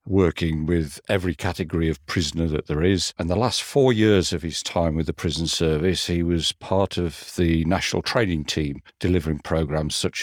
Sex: male